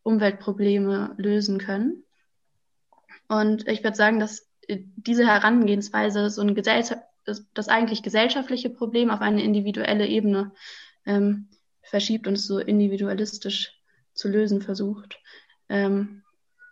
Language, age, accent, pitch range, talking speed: German, 20-39, German, 205-235 Hz, 110 wpm